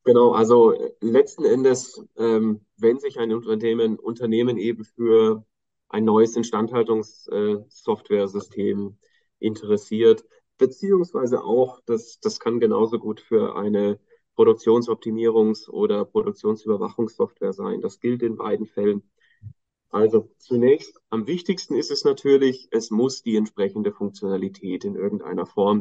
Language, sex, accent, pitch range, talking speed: German, male, German, 110-155 Hz, 110 wpm